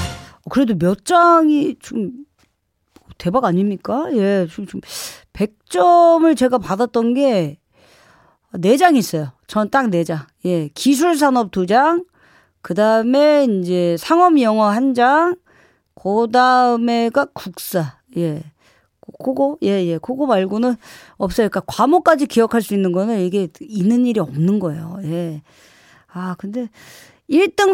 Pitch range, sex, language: 180-275 Hz, female, Korean